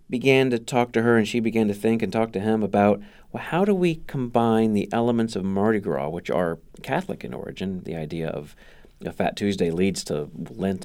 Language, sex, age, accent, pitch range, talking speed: English, male, 40-59, American, 90-120 Hz, 215 wpm